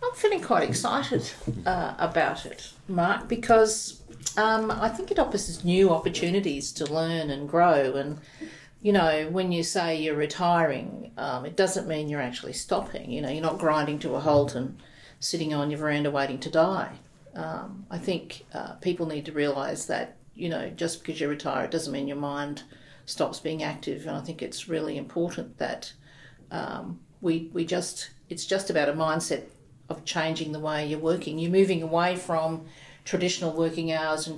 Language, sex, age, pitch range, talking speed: English, female, 50-69, 150-170 Hz, 180 wpm